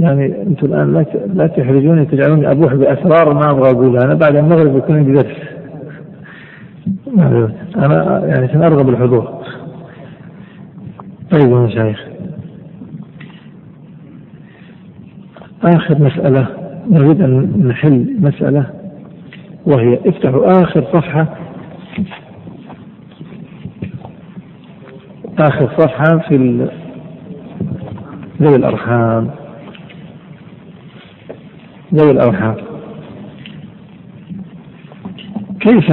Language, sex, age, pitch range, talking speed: Arabic, male, 50-69, 140-180 Hz, 75 wpm